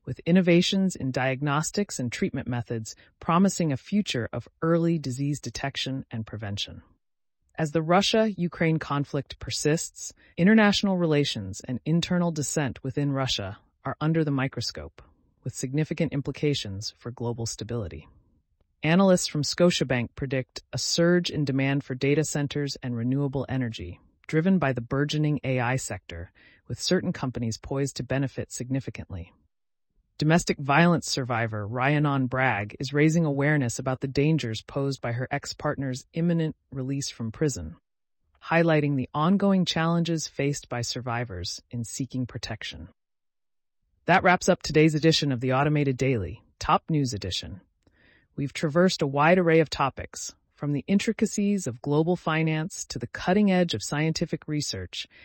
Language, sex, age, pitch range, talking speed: English, female, 30-49, 120-160 Hz, 135 wpm